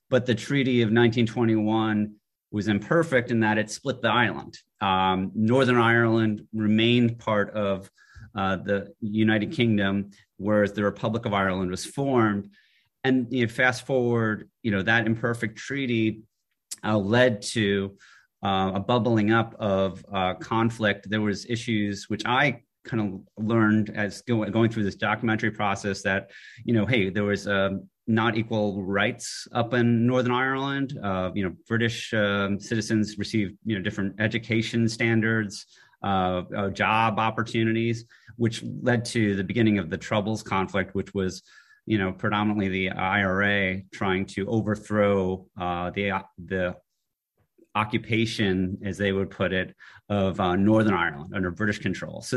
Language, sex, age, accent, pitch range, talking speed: English, male, 30-49, American, 100-115 Hz, 145 wpm